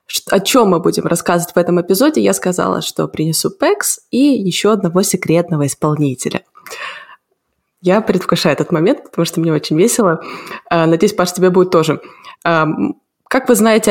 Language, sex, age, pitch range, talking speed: Russian, female, 20-39, 175-220 Hz, 150 wpm